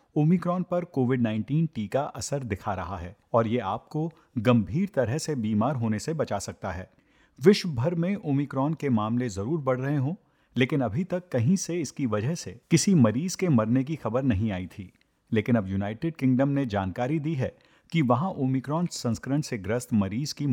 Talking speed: 185 wpm